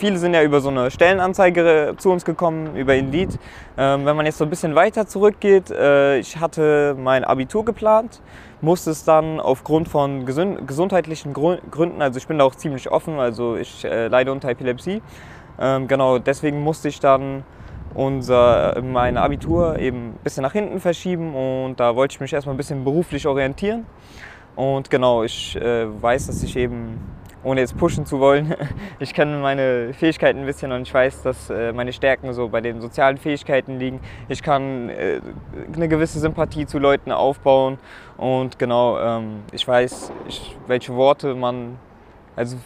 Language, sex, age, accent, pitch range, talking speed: German, male, 20-39, German, 120-155 Hz, 165 wpm